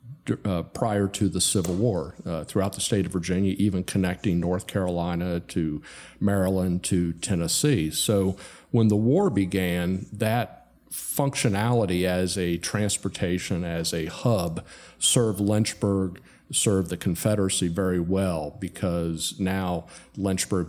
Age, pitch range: 50-69, 85-105 Hz